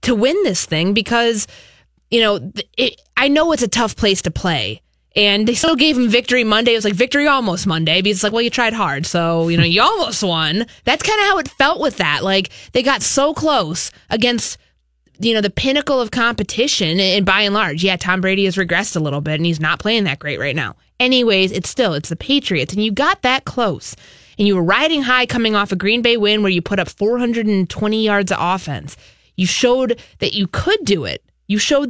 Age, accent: 20-39, American